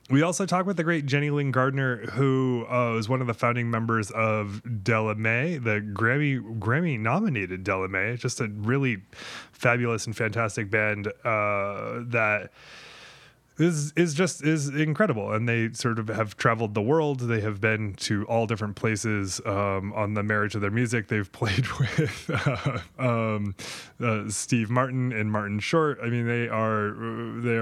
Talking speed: 165 wpm